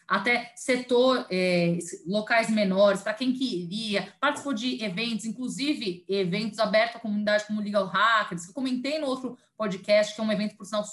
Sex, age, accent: female, 20-39, Brazilian